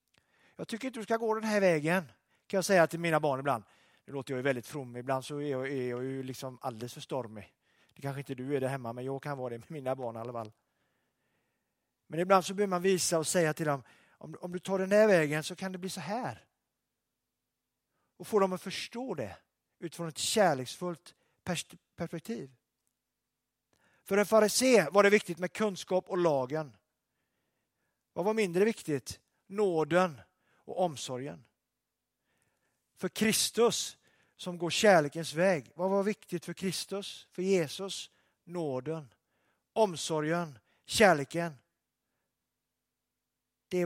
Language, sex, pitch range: Swedish, male, 135-185 Hz